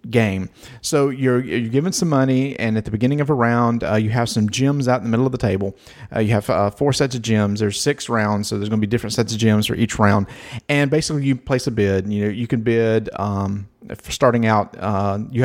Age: 40-59